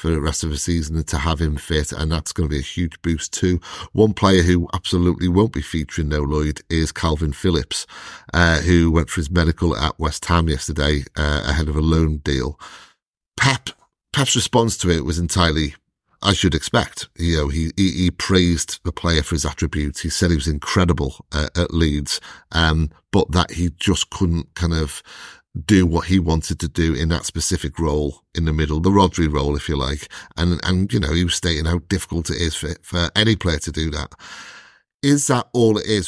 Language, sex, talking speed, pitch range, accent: English, male, 210 wpm, 80-95 Hz, British